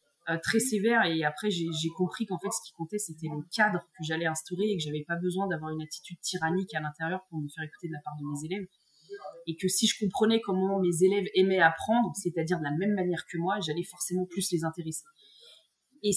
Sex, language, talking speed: female, French, 230 wpm